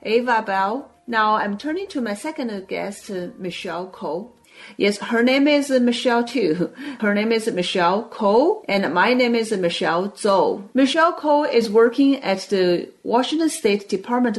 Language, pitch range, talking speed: English, 190-245 Hz, 155 wpm